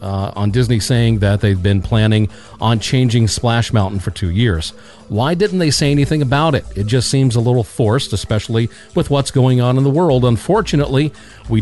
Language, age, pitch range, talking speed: English, 40-59, 110-130 Hz, 195 wpm